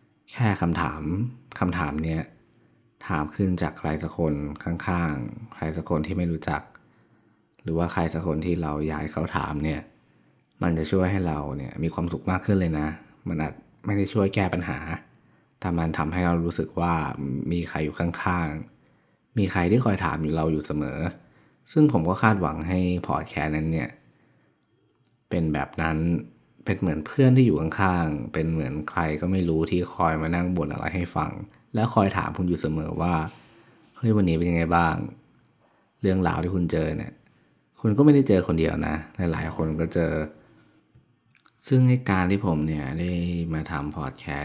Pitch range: 80-90 Hz